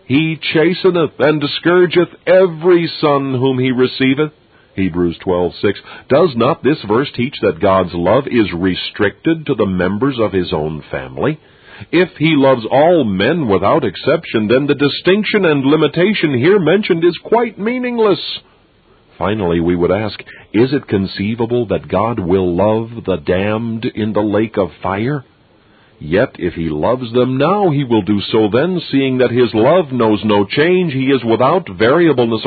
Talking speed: 155 wpm